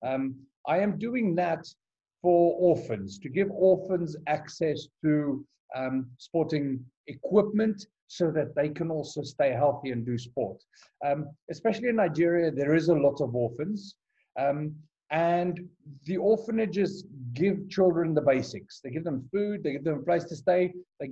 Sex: male